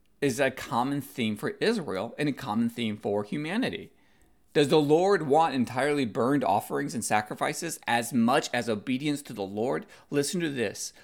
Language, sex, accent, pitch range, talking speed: English, male, American, 105-140 Hz, 170 wpm